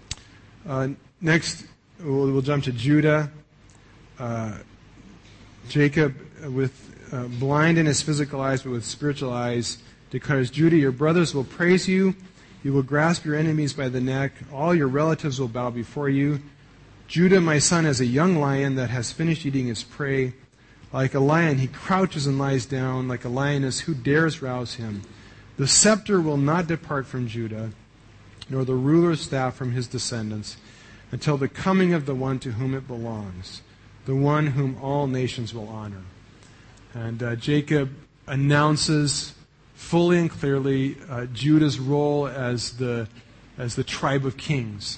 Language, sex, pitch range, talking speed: English, male, 120-150 Hz, 155 wpm